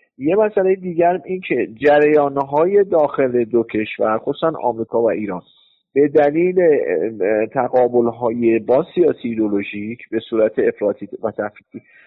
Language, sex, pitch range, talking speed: Persian, male, 125-160 Hz, 130 wpm